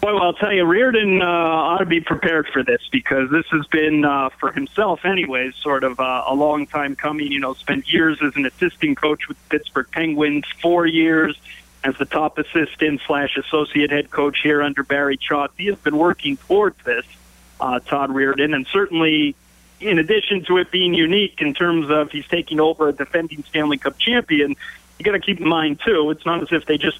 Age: 40-59